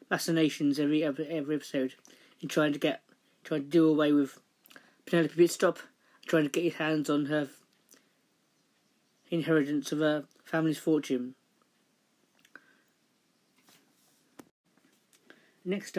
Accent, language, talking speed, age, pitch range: British, English, 110 wpm, 40-59, 150-175 Hz